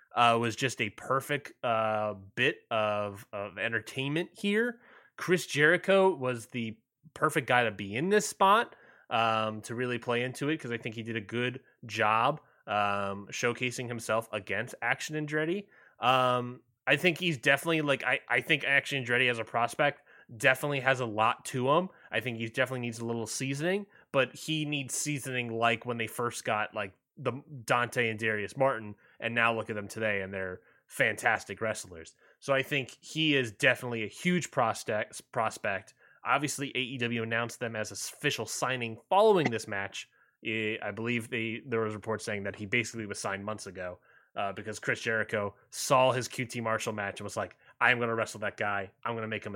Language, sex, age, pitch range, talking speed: English, male, 20-39, 110-140 Hz, 185 wpm